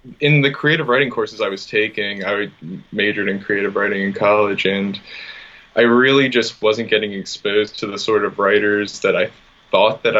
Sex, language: male, English